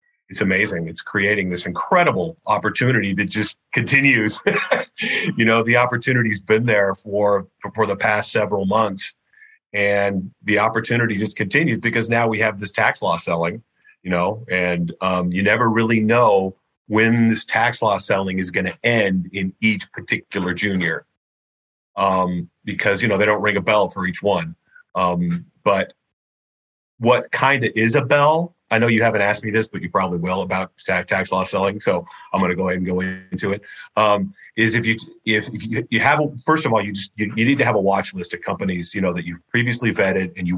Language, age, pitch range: English, 40-59, 95-115 Hz